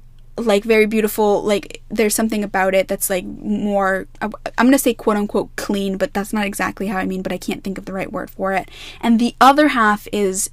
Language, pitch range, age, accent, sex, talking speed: English, 195-230 Hz, 10-29, American, female, 220 wpm